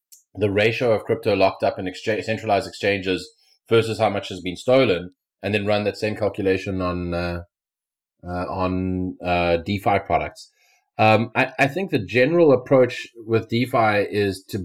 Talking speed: 165 wpm